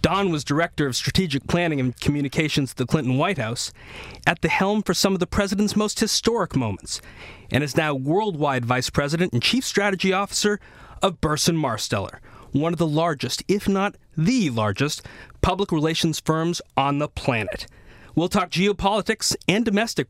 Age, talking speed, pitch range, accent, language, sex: 30-49, 165 wpm, 125-185 Hz, American, English, male